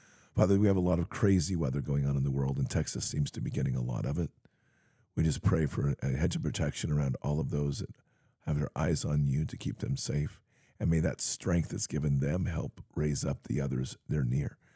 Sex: male